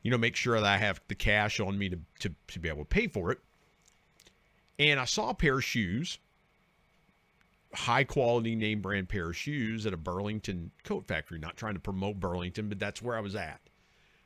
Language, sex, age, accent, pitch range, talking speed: English, male, 50-69, American, 90-115 Hz, 210 wpm